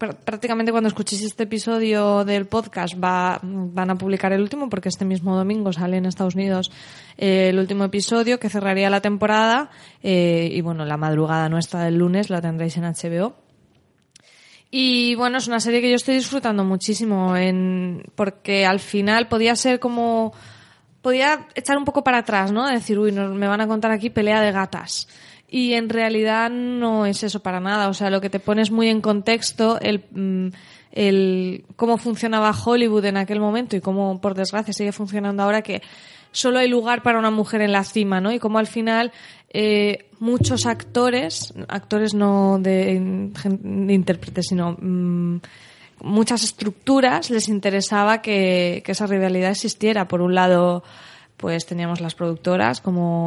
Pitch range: 185-225 Hz